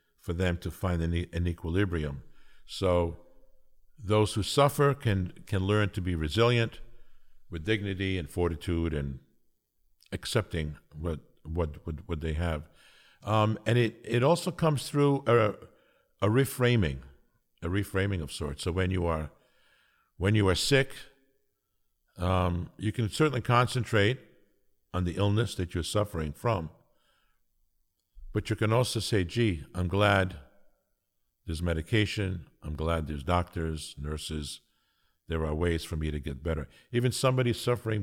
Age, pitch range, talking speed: 60-79, 80-110 Hz, 140 wpm